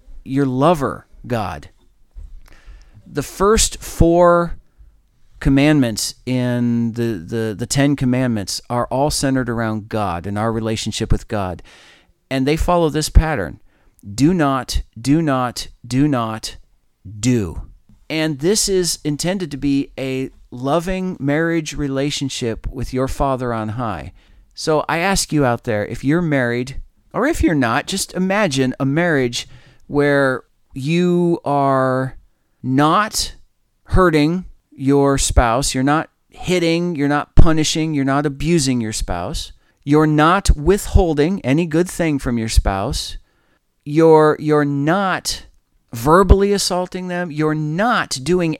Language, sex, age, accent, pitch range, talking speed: English, male, 40-59, American, 120-165 Hz, 125 wpm